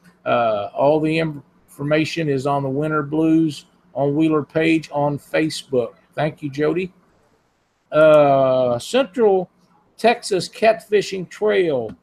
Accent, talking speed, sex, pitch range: American, 110 wpm, male, 145-195 Hz